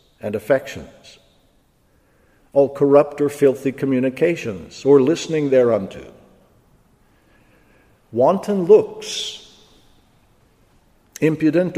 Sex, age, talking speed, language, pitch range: male, 50-69, 65 wpm, English, 125-145 Hz